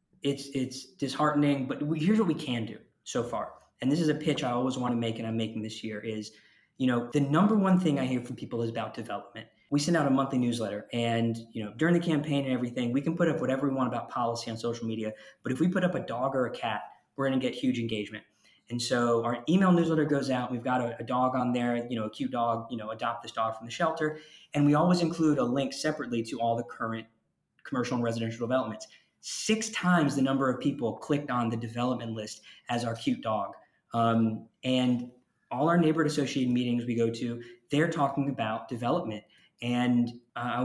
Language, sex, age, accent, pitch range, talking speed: English, male, 20-39, American, 115-145 Hz, 230 wpm